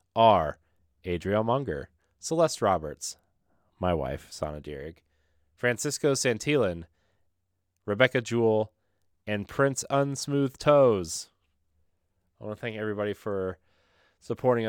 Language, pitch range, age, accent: English, 90-120 Hz, 30-49, American